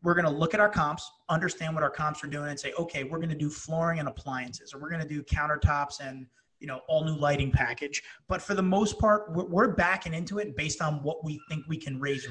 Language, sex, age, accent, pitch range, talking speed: English, male, 30-49, American, 150-190 Hz, 260 wpm